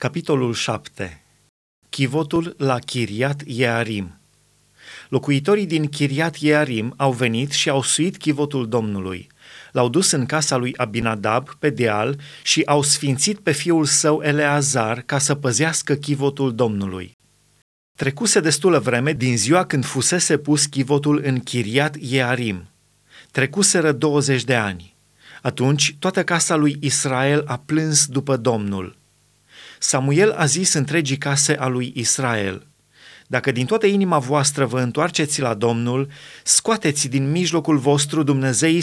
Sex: male